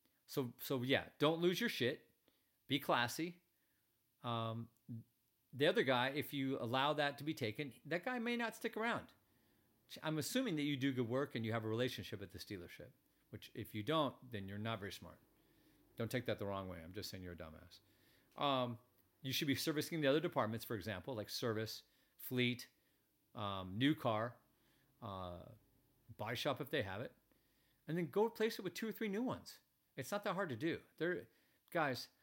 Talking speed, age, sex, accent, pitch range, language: 195 wpm, 40-59, male, American, 110-150 Hz, English